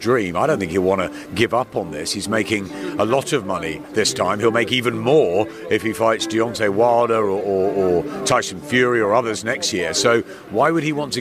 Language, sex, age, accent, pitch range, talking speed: English, male, 50-69, British, 100-125 Hz, 225 wpm